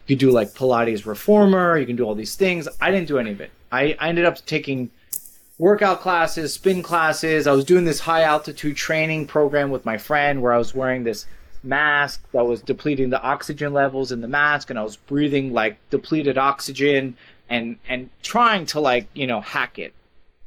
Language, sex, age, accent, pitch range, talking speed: English, male, 30-49, American, 120-150 Hz, 200 wpm